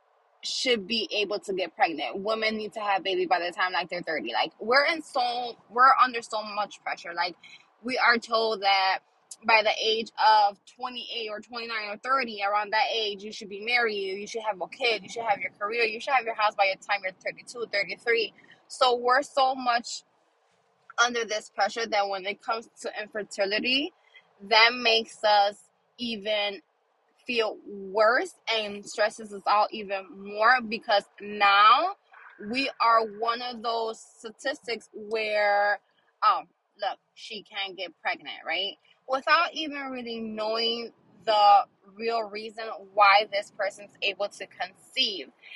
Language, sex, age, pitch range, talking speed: English, female, 20-39, 205-240 Hz, 160 wpm